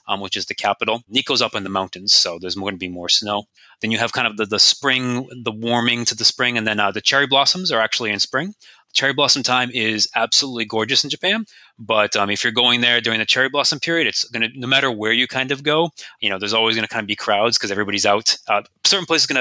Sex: male